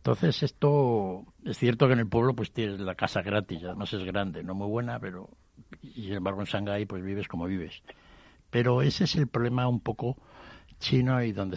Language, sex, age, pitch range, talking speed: Spanish, male, 60-79, 100-130 Hz, 200 wpm